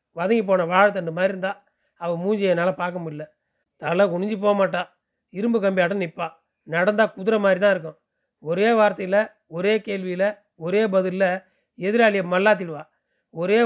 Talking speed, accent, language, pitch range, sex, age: 130 wpm, native, Tamil, 180-210 Hz, male, 30-49